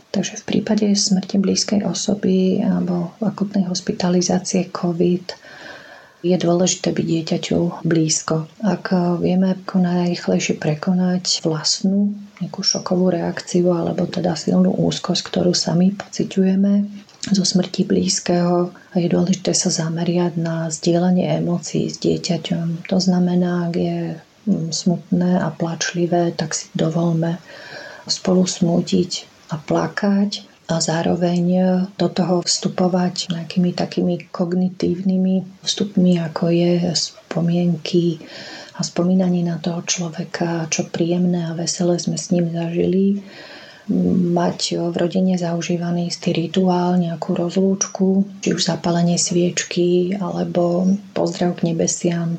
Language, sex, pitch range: Slovak, female, 170-190 Hz